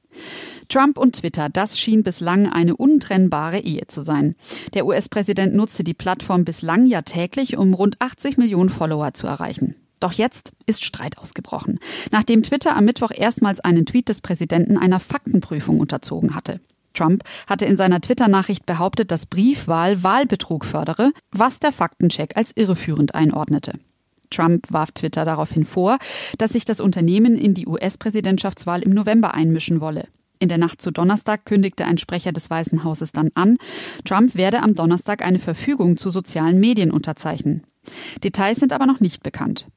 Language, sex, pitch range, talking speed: German, female, 170-225 Hz, 160 wpm